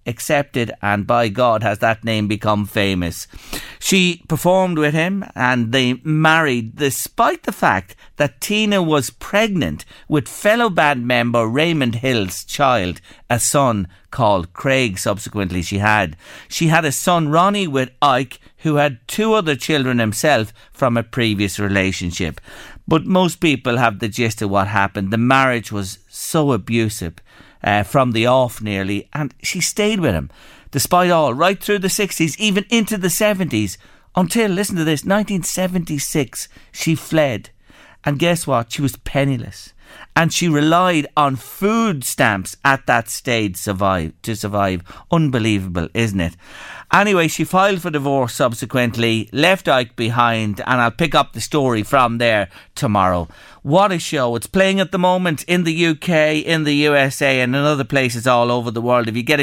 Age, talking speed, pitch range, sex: 50-69, 160 wpm, 110-160 Hz, male